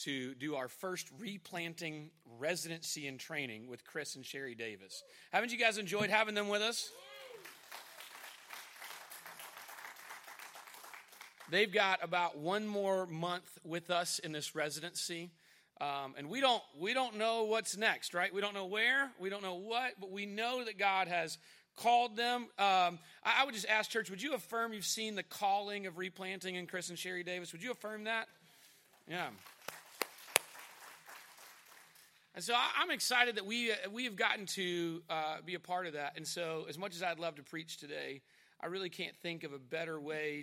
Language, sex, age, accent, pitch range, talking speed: English, male, 30-49, American, 165-210 Hz, 175 wpm